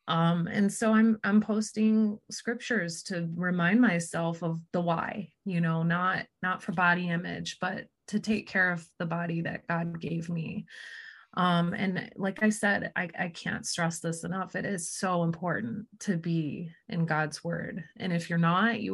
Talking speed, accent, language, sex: 175 wpm, American, English, female